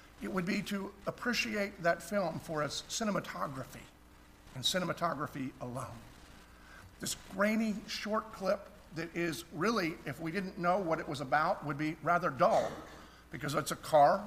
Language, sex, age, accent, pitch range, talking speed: English, male, 50-69, American, 140-190 Hz, 150 wpm